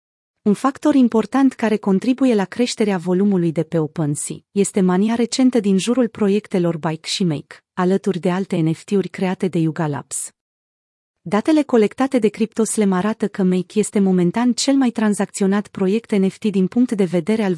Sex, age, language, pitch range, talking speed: female, 30-49, Romanian, 180-220 Hz, 155 wpm